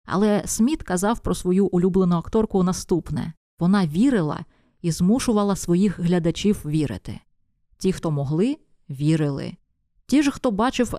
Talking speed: 125 wpm